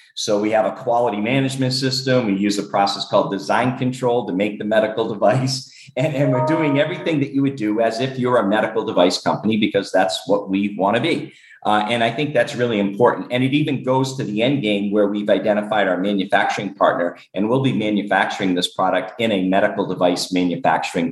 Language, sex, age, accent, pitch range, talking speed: English, male, 50-69, American, 105-135 Hz, 210 wpm